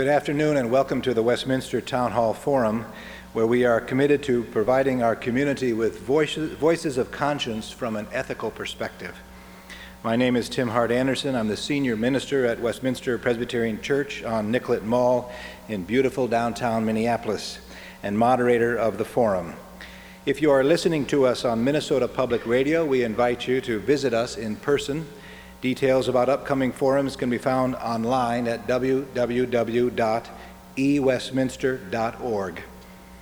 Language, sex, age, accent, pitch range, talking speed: English, male, 50-69, American, 115-135 Hz, 145 wpm